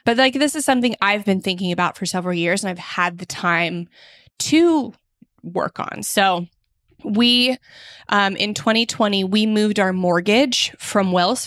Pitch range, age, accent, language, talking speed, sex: 180-220 Hz, 20-39, American, English, 160 wpm, female